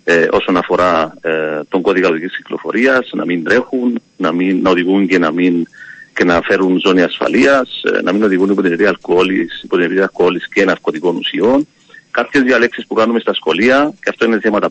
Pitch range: 95-125 Hz